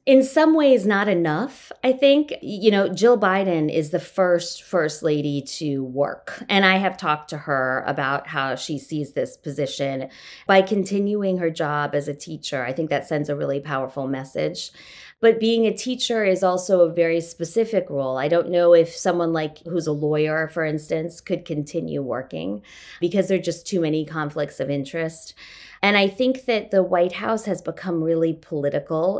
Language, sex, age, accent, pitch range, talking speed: English, female, 20-39, American, 150-190 Hz, 185 wpm